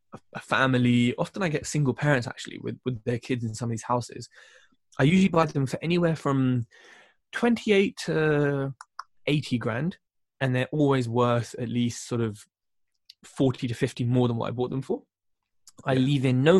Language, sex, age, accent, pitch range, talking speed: English, male, 10-29, British, 120-145 Hz, 180 wpm